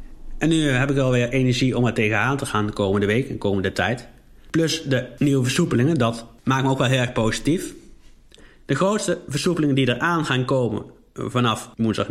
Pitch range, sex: 115-145 Hz, male